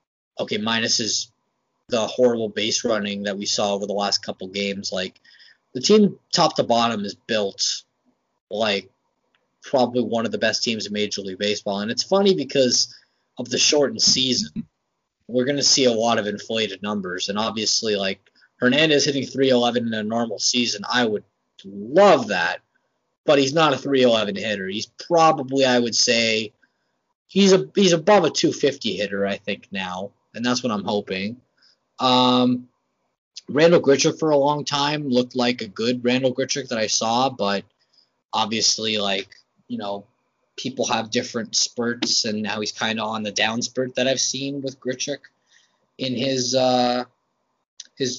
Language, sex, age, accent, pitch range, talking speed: English, male, 20-39, American, 105-135 Hz, 165 wpm